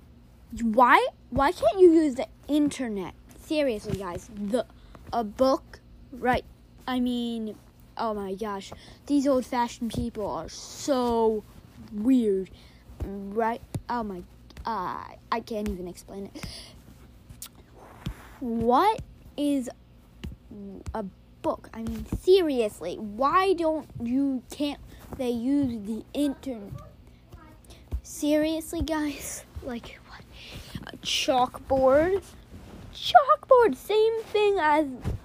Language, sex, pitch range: English, female, 230-325 Hz